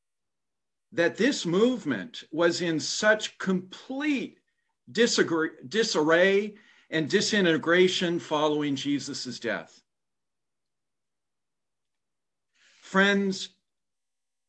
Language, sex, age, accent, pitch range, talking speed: English, male, 50-69, American, 165-215 Hz, 60 wpm